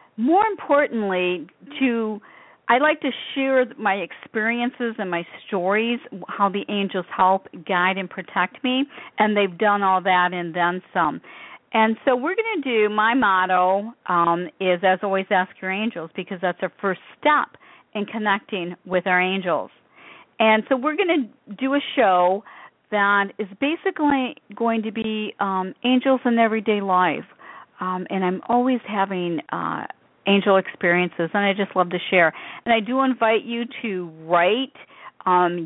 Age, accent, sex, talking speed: 50-69, American, female, 160 wpm